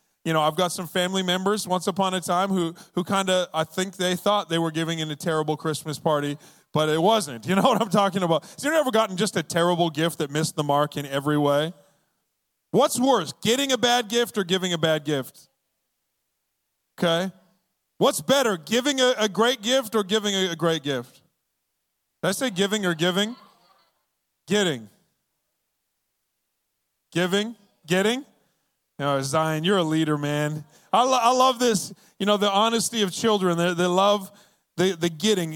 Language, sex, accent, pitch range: English, male, American, 160-210 Hz